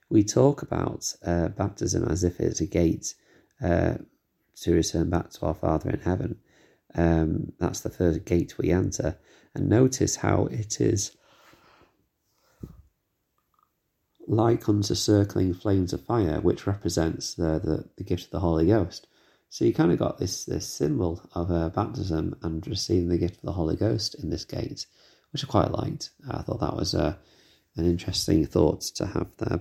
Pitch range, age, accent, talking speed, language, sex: 85-110 Hz, 30-49, British, 170 wpm, English, male